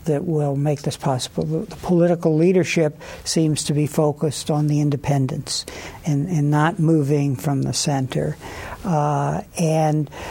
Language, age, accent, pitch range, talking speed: English, 60-79, American, 150-175 Hz, 140 wpm